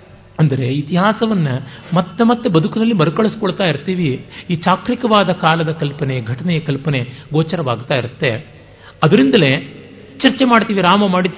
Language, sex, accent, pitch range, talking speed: Kannada, male, native, 150-200 Hz, 105 wpm